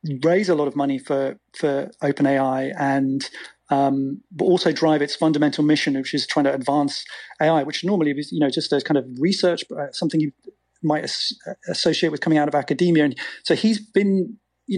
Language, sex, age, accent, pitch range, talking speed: English, male, 30-49, British, 145-165 Hz, 200 wpm